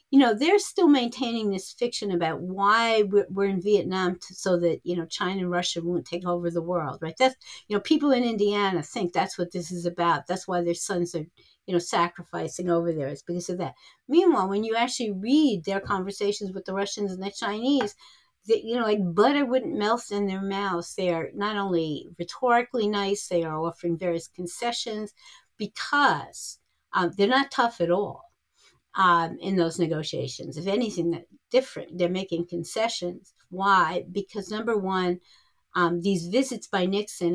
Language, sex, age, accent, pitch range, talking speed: English, female, 60-79, American, 175-215 Hz, 180 wpm